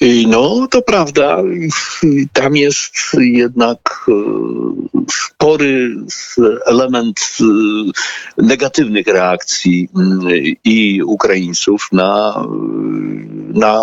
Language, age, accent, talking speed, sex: Polish, 50-69, native, 60 wpm, male